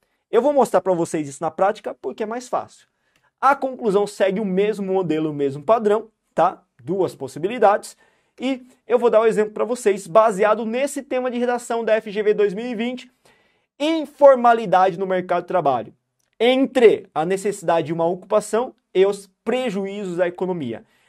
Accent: Brazilian